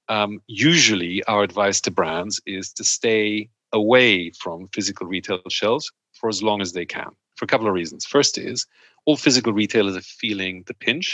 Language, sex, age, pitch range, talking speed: English, male, 40-59, 95-110 Hz, 185 wpm